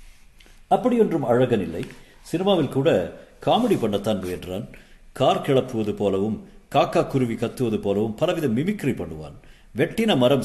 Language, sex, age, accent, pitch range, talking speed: Tamil, male, 50-69, native, 95-130 Hz, 115 wpm